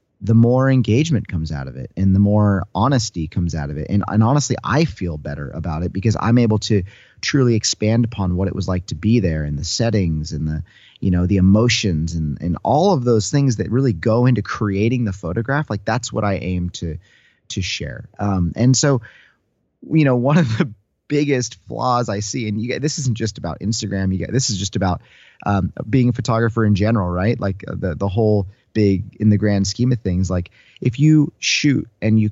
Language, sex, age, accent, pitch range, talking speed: English, male, 30-49, American, 95-120 Hz, 215 wpm